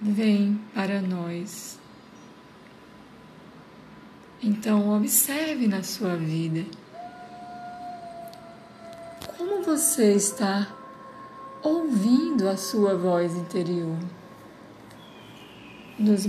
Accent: Brazilian